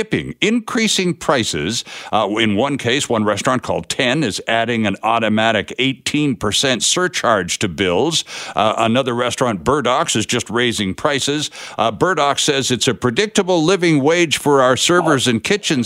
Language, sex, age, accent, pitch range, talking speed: English, male, 60-79, American, 120-175 Hz, 150 wpm